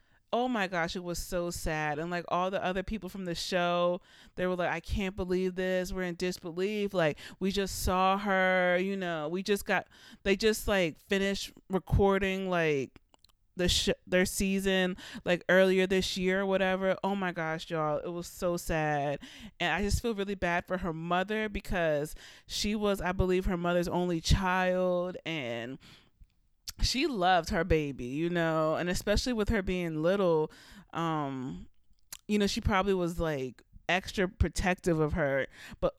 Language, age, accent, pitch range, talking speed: English, 30-49, American, 160-195 Hz, 170 wpm